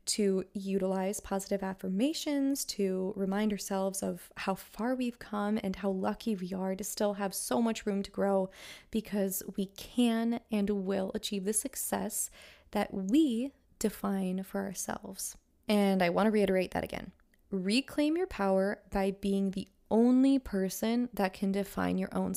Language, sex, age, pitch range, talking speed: English, female, 20-39, 195-230 Hz, 155 wpm